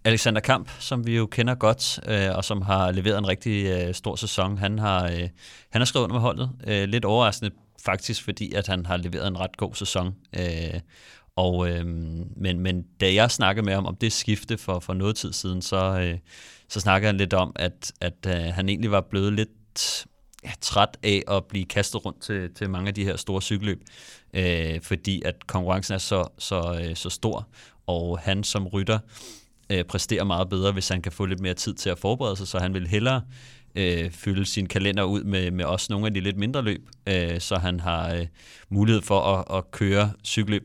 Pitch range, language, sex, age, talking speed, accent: 90-105 Hz, Danish, male, 30-49, 200 wpm, native